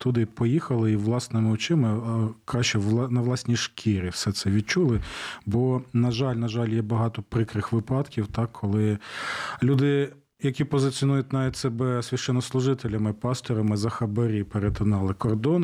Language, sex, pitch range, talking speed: Ukrainian, male, 110-130 Hz, 135 wpm